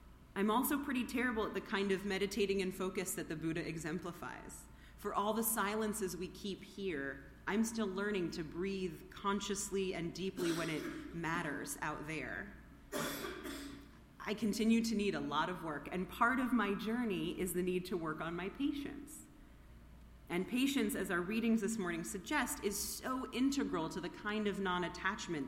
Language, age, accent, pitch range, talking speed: English, 30-49, American, 165-210 Hz, 170 wpm